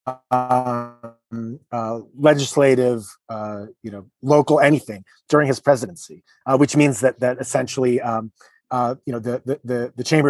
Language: English